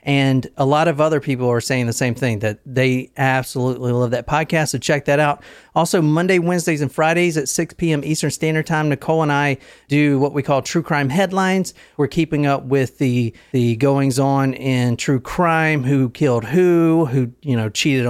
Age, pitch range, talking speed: 40-59, 135-160 Hz, 195 wpm